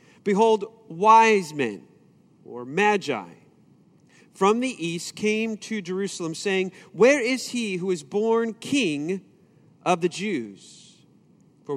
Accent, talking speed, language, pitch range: American, 115 wpm, English, 175-230 Hz